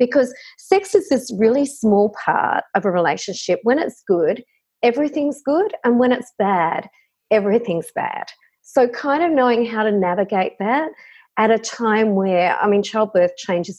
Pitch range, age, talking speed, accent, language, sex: 190-255 Hz, 40-59, 160 wpm, Australian, English, female